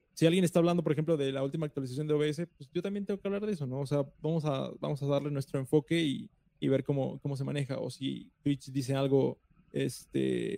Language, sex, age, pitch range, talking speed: Spanish, male, 20-39, 140-165 Hz, 245 wpm